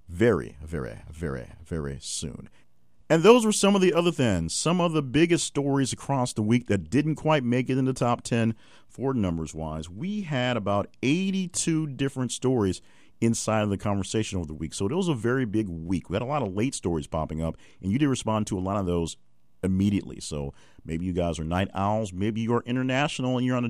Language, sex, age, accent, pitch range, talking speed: English, male, 40-59, American, 80-125 Hz, 220 wpm